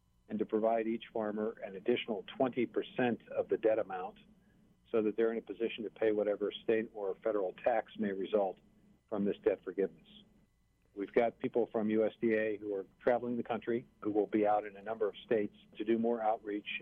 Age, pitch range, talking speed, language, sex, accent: 50-69, 105-120 Hz, 195 wpm, English, male, American